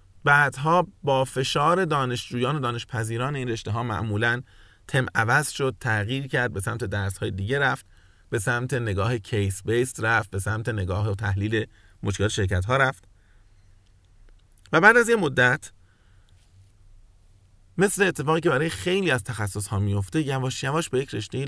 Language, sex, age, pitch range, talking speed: Persian, male, 30-49, 95-135 Hz, 155 wpm